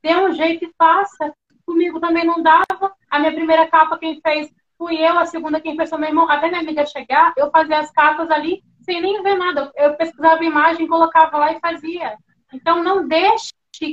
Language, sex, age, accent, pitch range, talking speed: Portuguese, female, 10-29, Brazilian, 285-345 Hz, 205 wpm